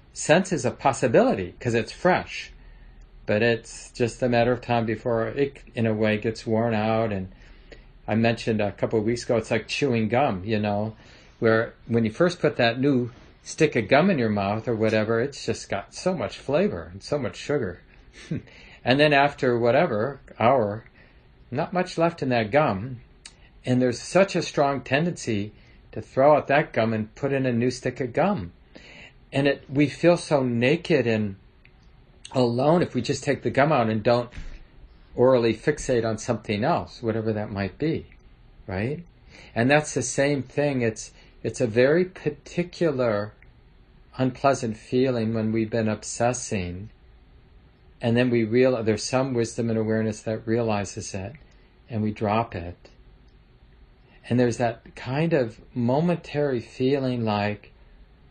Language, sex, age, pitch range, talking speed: English, male, 50-69, 110-135 Hz, 165 wpm